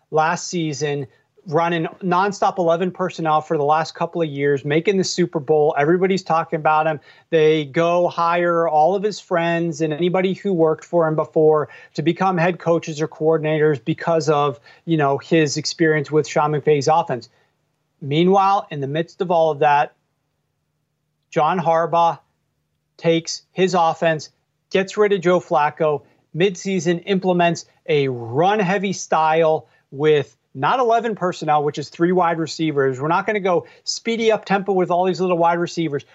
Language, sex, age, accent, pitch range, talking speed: English, male, 40-59, American, 155-180 Hz, 160 wpm